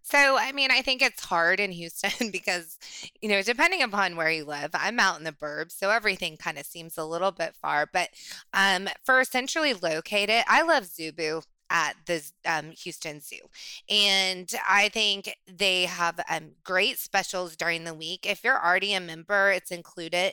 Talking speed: 185 wpm